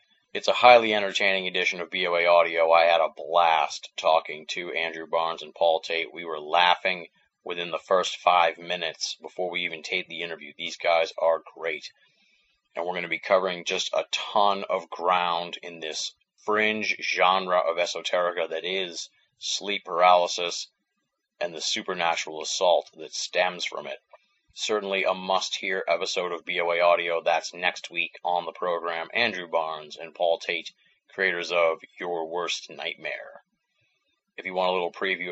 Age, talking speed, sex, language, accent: 30-49, 160 wpm, male, English, American